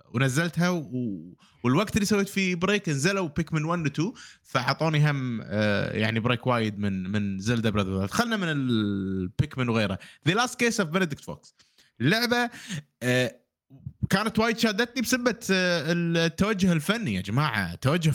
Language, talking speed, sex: Arabic, 140 wpm, male